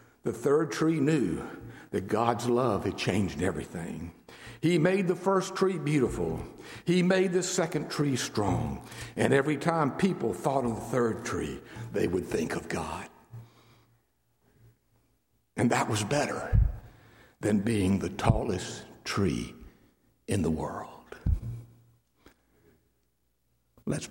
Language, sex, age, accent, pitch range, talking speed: English, male, 60-79, American, 90-130 Hz, 120 wpm